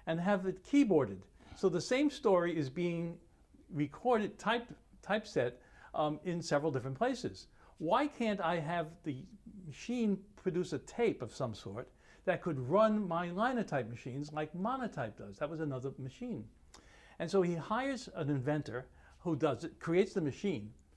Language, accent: English, American